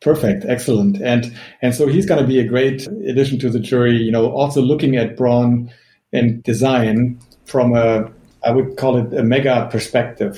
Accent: German